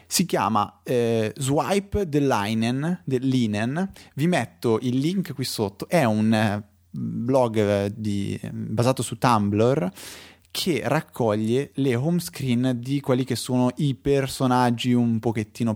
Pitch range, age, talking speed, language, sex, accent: 105-140 Hz, 20-39, 135 wpm, Italian, male, native